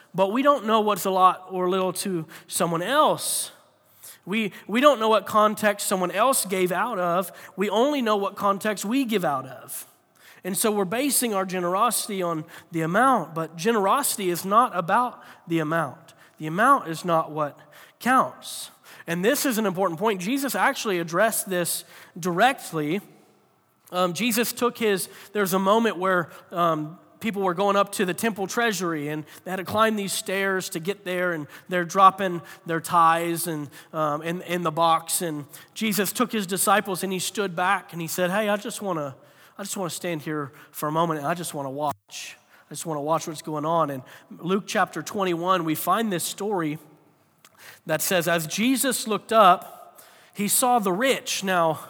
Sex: male